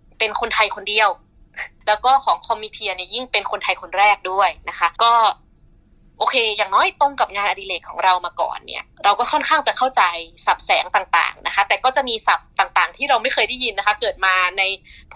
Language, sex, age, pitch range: Thai, female, 20-39, 190-250 Hz